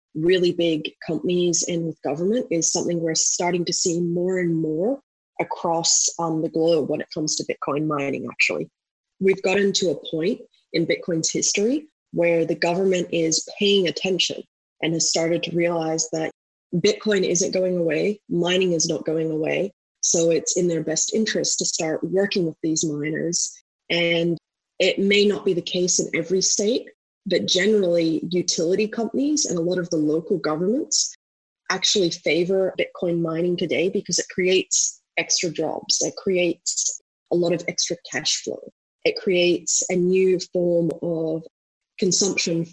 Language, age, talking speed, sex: English, 20-39, 160 wpm, female